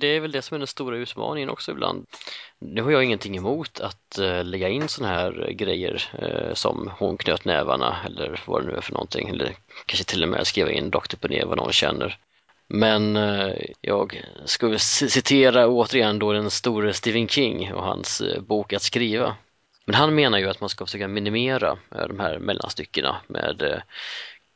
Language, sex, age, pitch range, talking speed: Swedish, male, 30-49, 100-145 Hz, 190 wpm